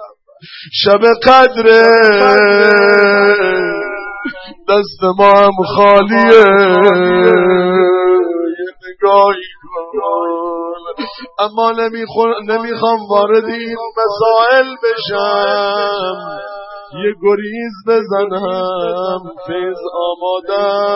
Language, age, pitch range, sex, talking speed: Persian, 50-69, 200-255 Hz, male, 50 wpm